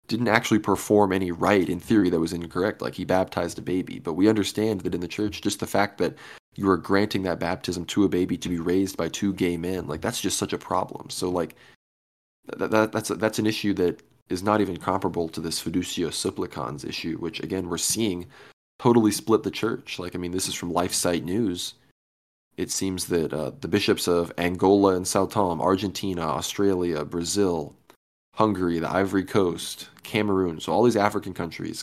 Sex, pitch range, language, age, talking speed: male, 85-100 Hz, English, 20-39, 200 wpm